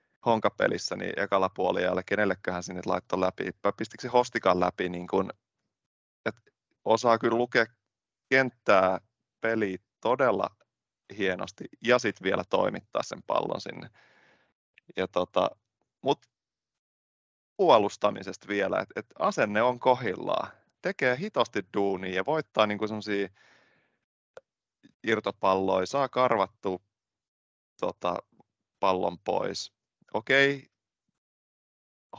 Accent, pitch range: native, 95-120 Hz